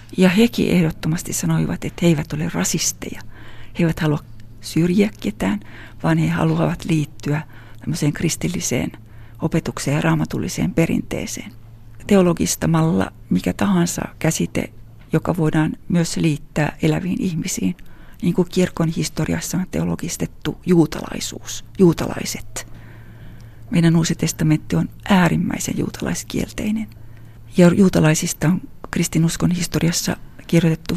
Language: Finnish